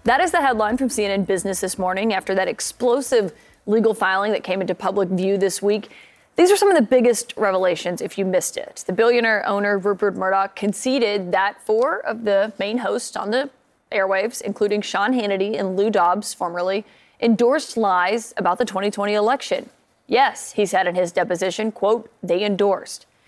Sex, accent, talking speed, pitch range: female, American, 180 wpm, 190-235 Hz